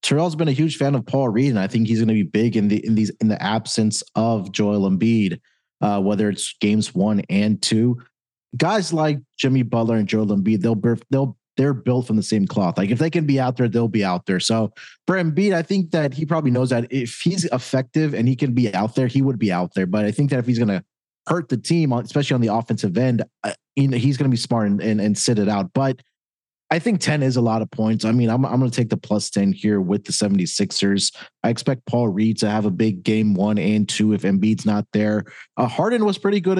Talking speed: 255 wpm